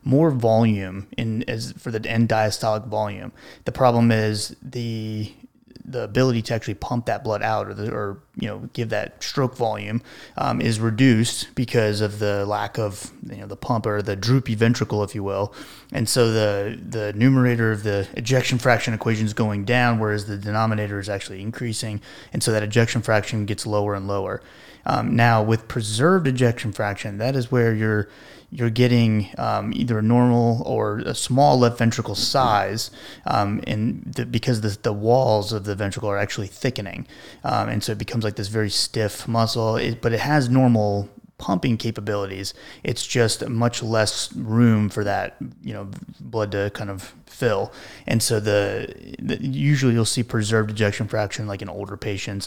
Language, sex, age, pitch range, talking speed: English, male, 30-49, 100-115 Hz, 175 wpm